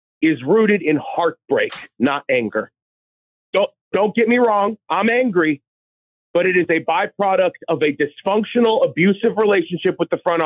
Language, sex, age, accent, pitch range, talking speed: English, male, 40-59, American, 160-230 Hz, 150 wpm